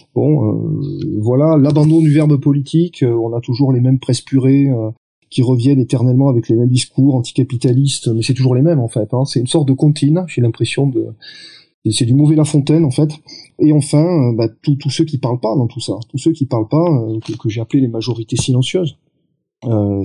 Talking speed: 220 wpm